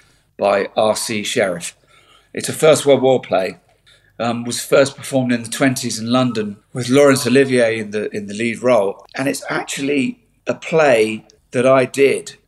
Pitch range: 115-135 Hz